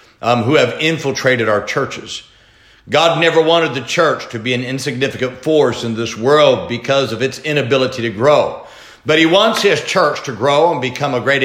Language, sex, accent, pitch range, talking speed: English, male, American, 130-170 Hz, 190 wpm